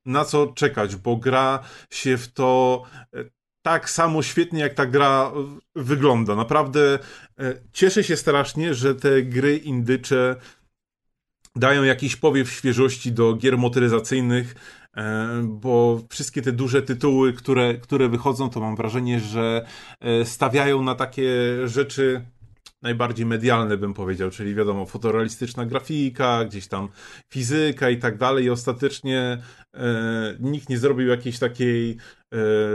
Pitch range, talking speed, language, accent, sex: 120-135 Hz, 125 wpm, Polish, native, male